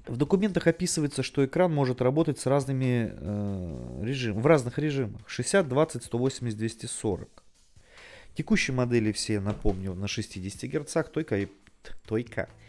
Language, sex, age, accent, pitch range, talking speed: Russian, male, 30-49, native, 100-135 Hz, 115 wpm